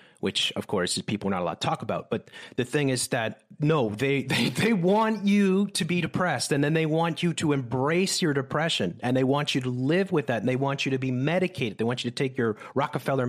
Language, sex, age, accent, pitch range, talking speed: English, male, 30-49, American, 125-160 Hz, 255 wpm